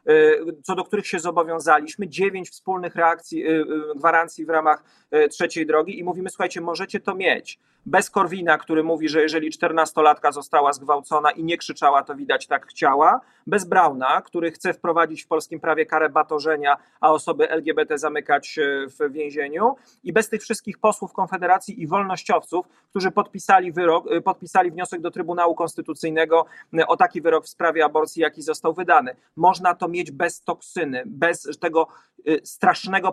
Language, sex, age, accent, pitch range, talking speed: Polish, male, 40-59, native, 155-185 Hz, 150 wpm